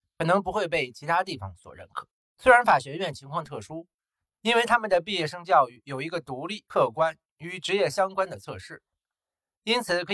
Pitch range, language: 150-205 Hz, Chinese